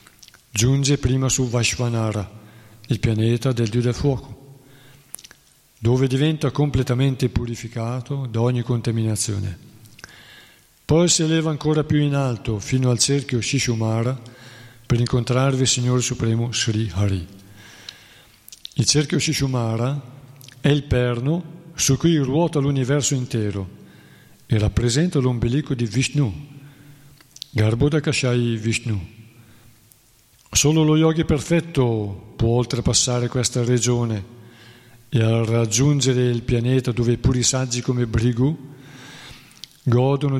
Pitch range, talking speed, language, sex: 115-135 Hz, 105 wpm, Italian, male